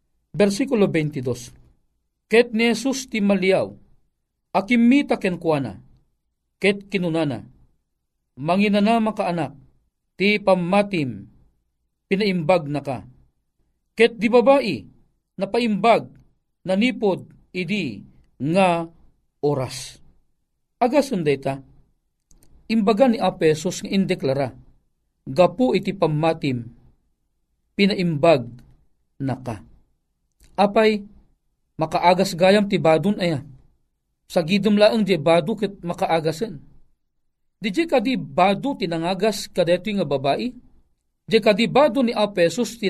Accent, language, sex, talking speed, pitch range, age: native, Filipino, male, 85 wpm, 160-230 Hz, 40-59